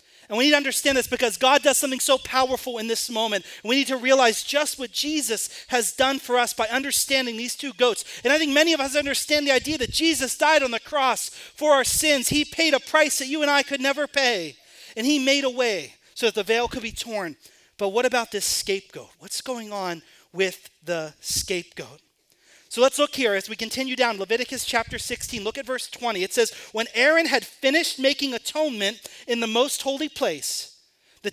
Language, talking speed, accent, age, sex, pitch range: English, 215 wpm, American, 40-59, male, 225-275 Hz